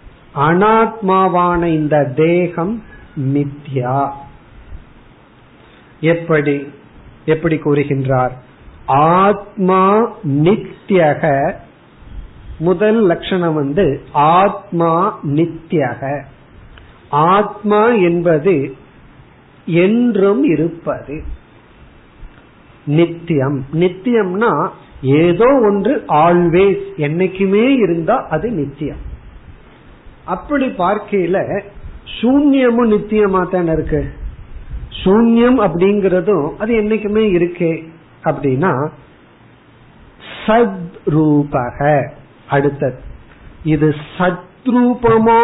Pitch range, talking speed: 145-200 Hz, 40 wpm